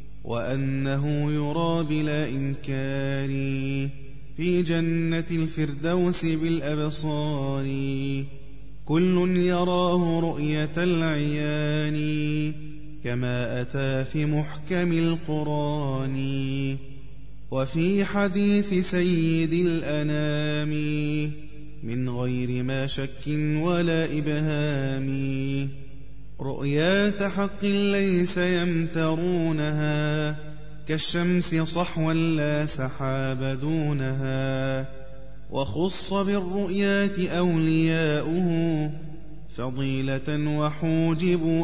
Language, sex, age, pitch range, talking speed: Arabic, male, 20-39, 135-175 Hz, 60 wpm